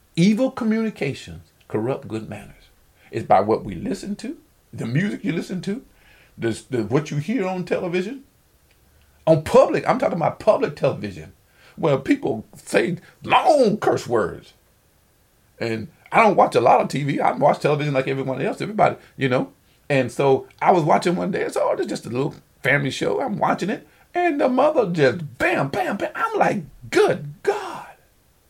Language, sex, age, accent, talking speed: English, male, 50-69, American, 165 wpm